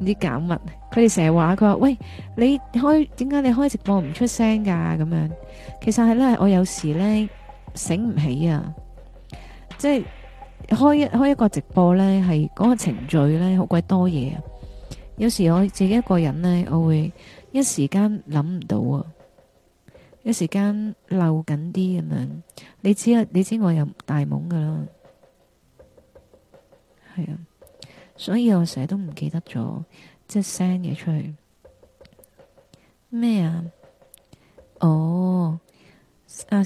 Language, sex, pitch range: Chinese, female, 165-210 Hz